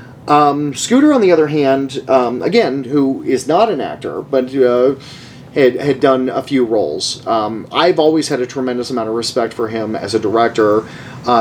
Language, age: English, 40-59